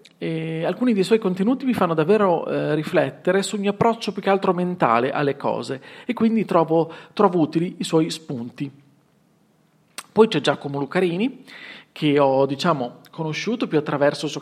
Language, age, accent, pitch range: Italian, 40-59, native, 150-190 Hz